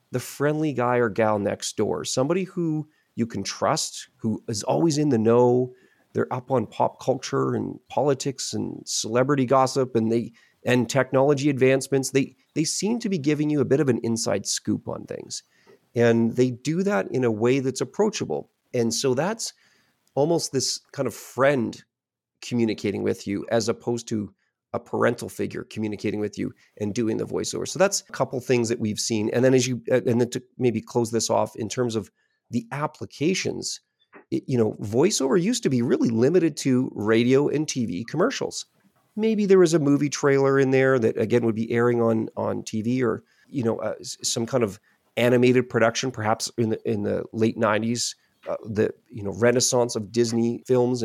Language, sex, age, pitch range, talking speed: English, male, 40-59, 115-135 Hz, 185 wpm